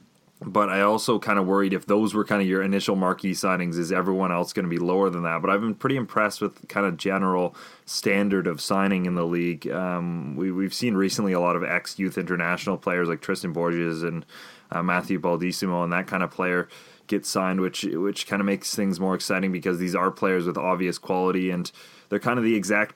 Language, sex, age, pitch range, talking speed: English, male, 20-39, 90-100 Hz, 220 wpm